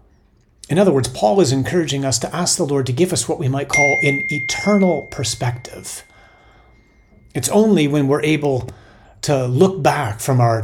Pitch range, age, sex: 120-170 Hz, 40-59, male